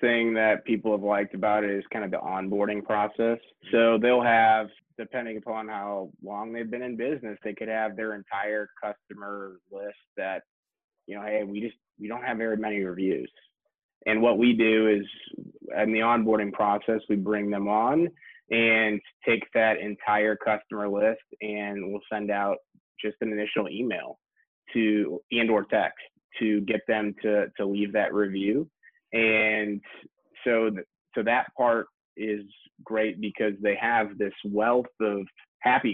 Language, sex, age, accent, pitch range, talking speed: English, male, 20-39, American, 105-115 Hz, 160 wpm